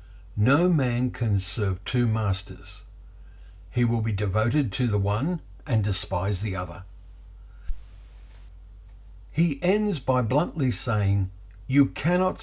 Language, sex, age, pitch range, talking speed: English, male, 60-79, 95-125 Hz, 115 wpm